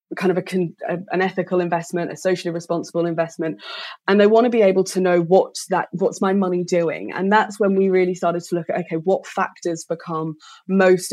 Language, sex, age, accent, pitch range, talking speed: English, female, 20-39, British, 165-190 Hz, 205 wpm